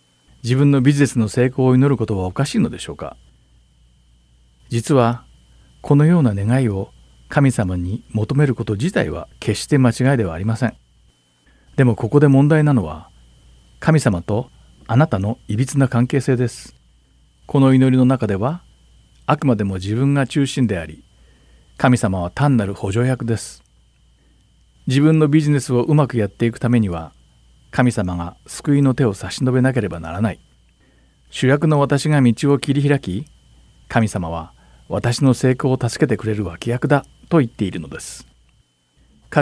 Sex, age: male, 50-69